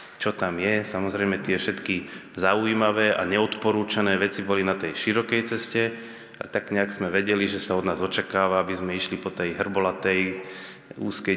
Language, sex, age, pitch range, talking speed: Slovak, male, 30-49, 95-110 Hz, 170 wpm